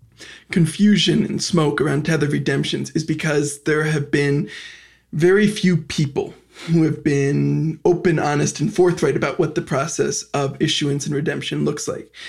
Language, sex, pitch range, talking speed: English, male, 145-175 Hz, 150 wpm